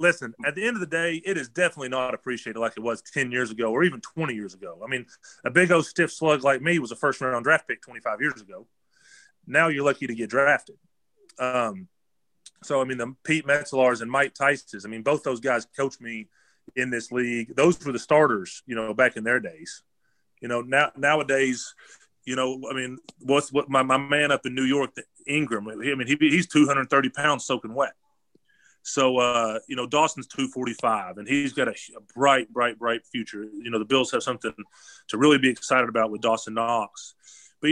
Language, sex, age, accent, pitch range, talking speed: English, male, 30-49, American, 120-145 Hz, 210 wpm